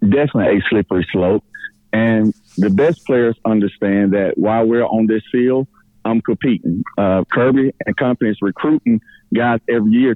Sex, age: male, 40-59